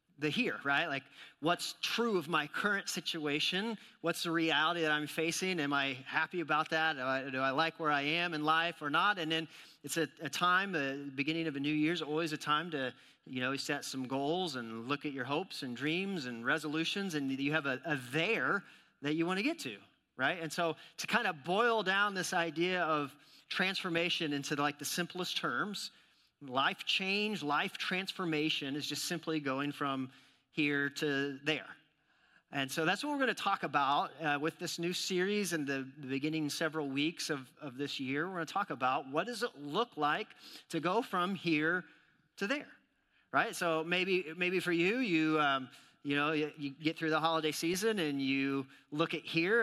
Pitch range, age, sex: 140-175 Hz, 40-59, male